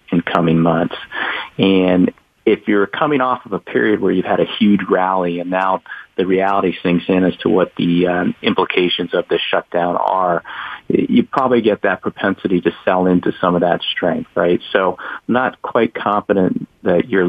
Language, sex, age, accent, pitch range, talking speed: English, male, 40-59, American, 85-95 Hz, 180 wpm